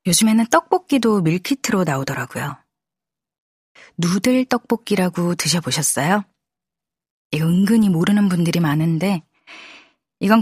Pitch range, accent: 160-215 Hz, native